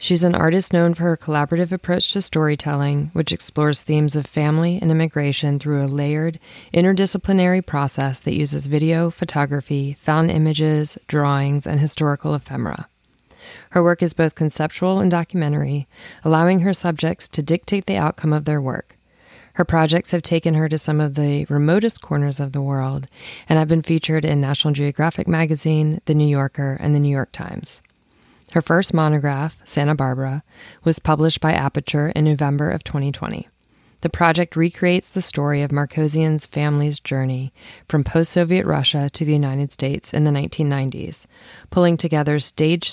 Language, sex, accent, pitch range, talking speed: English, female, American, 145-165 Hz, 160 wpm